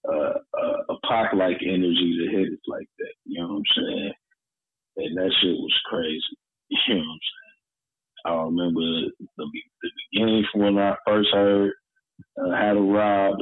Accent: American